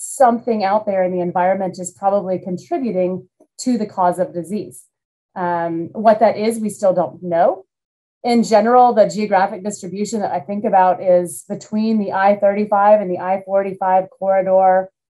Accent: American